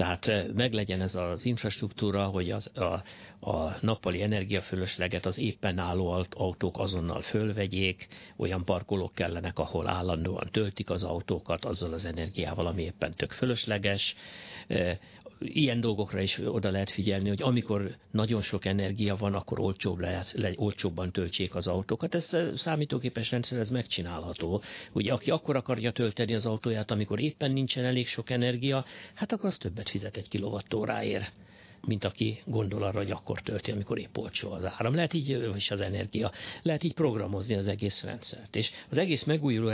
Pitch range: 95-115 Hz